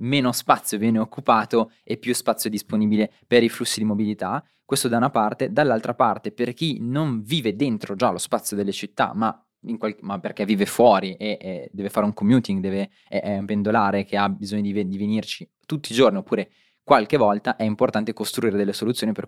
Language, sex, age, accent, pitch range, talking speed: Italian, male, 20-39, native, 105-125 Hz, 205 wpm